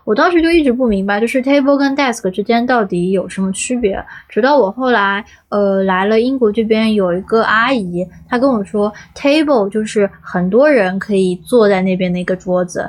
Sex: female